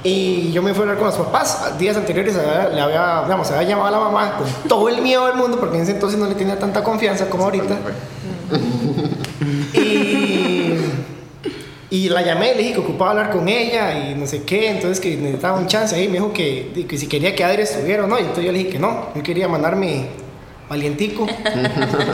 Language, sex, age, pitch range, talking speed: Spanish, male, 20-39, 155-210 Hz, 220 wpm